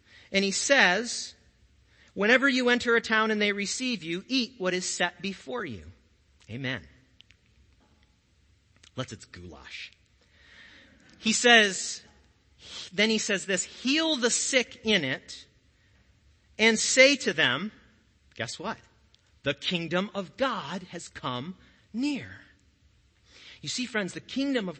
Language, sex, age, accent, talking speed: English, male, 40-59, American, 125 wpm